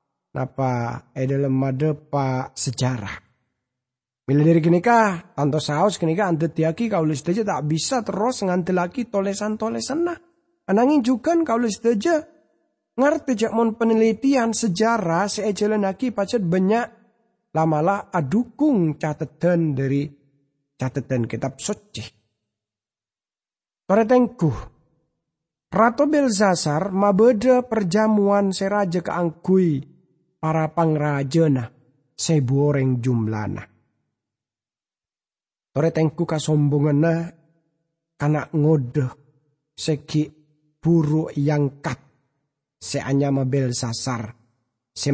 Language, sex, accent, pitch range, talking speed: English, male, Indonesian, 140-210 Hz, 85 wpm